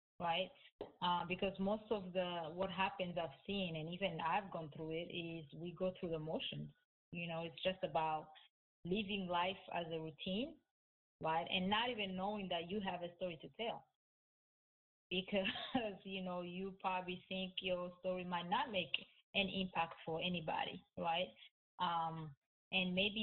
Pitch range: 165-190 Hz